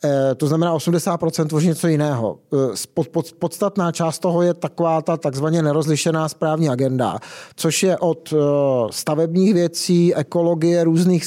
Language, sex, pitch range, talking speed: Czech, male, 150-185 Hz, 120 wpm